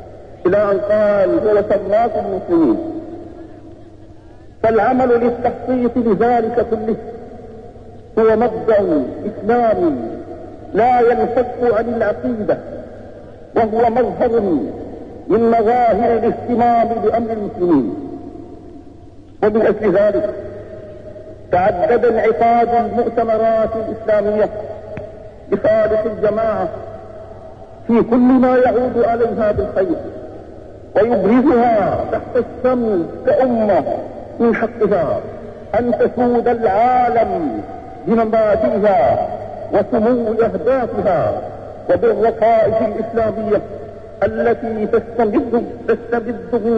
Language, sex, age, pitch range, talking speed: Arabic, male, 50-69, 220-275 Hz, 70 wpm